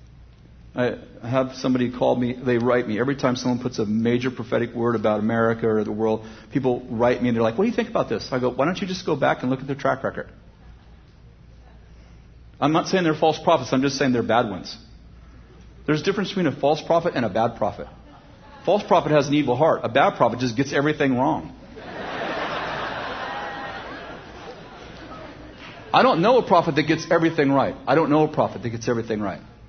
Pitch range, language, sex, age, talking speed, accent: 125-175 Hz, English, male, 50-69, 205 wpm, American